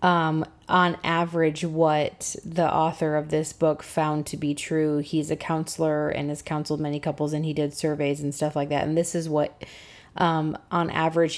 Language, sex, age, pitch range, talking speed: English, female, 20-39, 155-170 Hz, 190 wpm